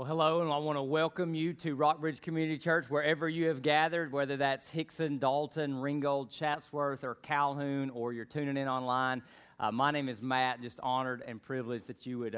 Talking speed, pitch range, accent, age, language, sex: 200 wpm, 130-160 Hz, American, 40-59, English, male